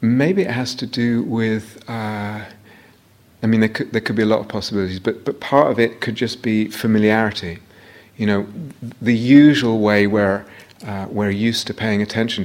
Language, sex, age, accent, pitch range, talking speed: English, male, 30-49, British, 100-125 Hz, 195 wpm